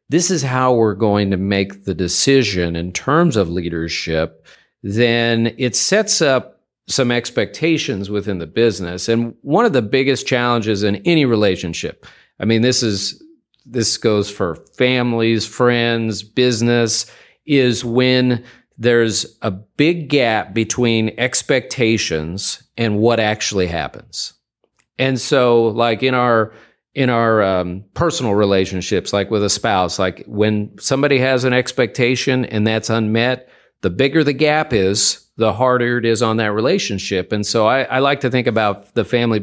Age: 40-59